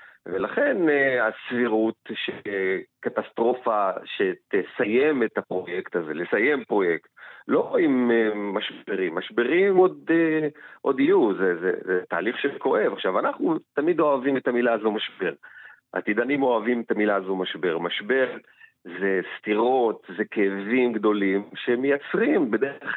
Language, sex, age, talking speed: Hebrew, male, 40-59, 110 wpm